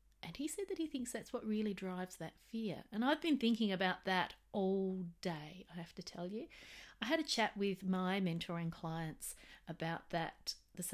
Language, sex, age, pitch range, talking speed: English, female, 30-49, 175-220 Hz, 195 wpm